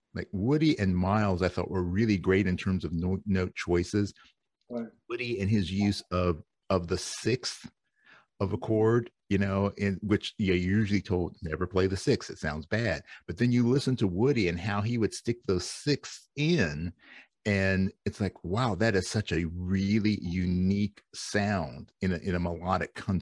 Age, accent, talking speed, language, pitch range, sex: 50-69, American, 175 wpm, English, 90-105 Hz, male